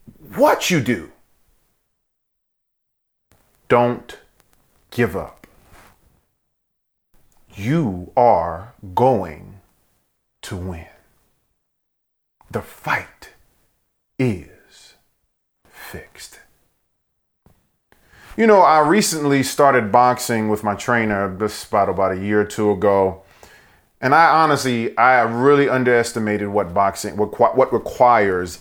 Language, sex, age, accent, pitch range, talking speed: English, male, 40-59, American, 105-165 Hz, 90 wpm